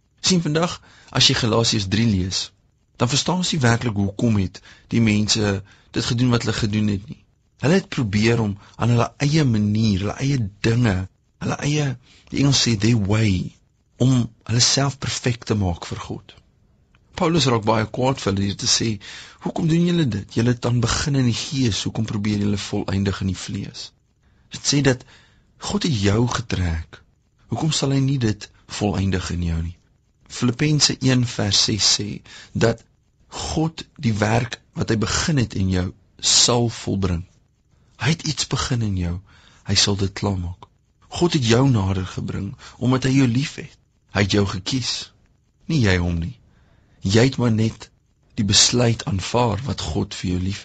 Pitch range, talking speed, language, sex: 100-125 Hz, 175 wpm, English, male